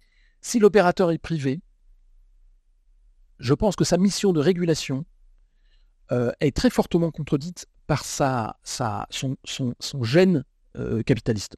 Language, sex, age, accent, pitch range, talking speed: French, male, 50-69, French, 115-170 Hz, 130 wpm